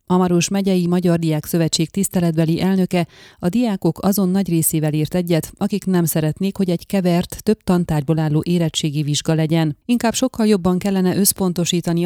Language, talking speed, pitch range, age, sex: Hungarian, 155 wpm, 160-190 Hz, 30-49, female